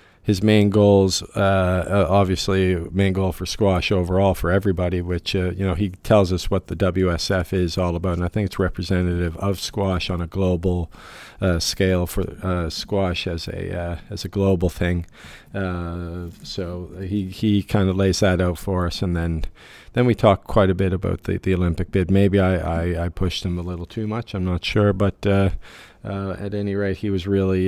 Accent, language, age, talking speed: American, English, 50-69, 200 wpm